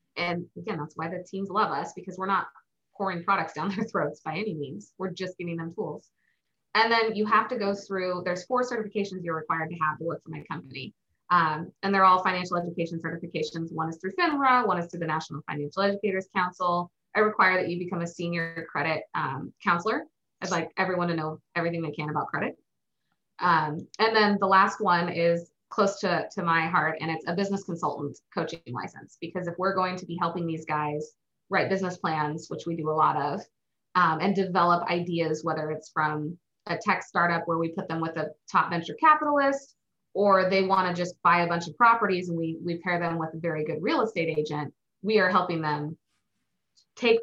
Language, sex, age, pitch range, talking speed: English, female, 20-39, 165-195 Hz, 210 wpm